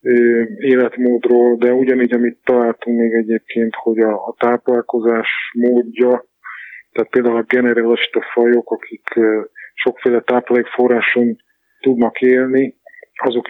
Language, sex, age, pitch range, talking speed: Hungarian, male, 20-39, 115-125 Hz, 100 wpm